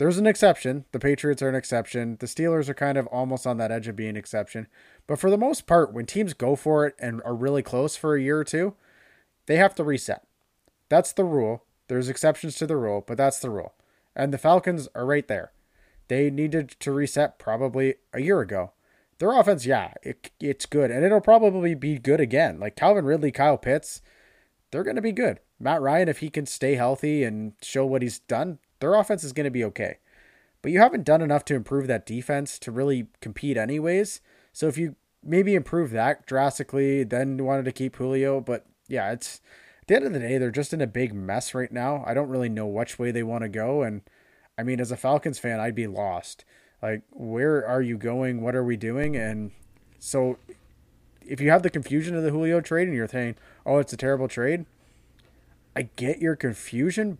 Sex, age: male, 20-39